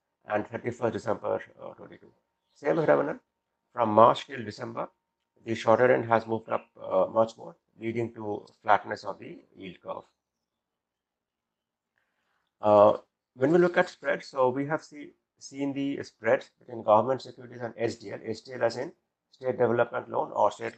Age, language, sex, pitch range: 60-79, English, male, 115-140 Hz